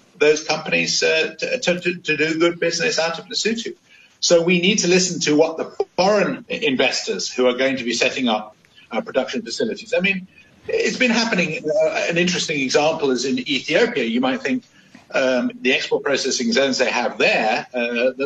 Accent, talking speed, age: British, 185 wpm, 50-69